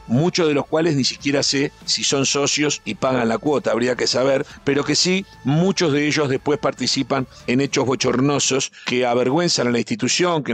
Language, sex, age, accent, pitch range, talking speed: Spanish, male, 50-69, Argentinian, 125-155 Hz, 195 wpm